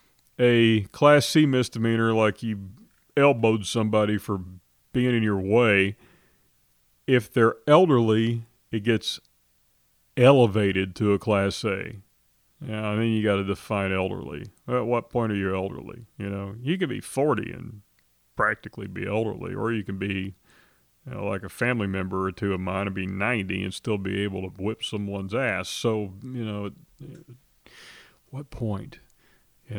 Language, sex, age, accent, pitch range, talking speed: English, male, 40-59, American, 95-120 Hz, 160 wpm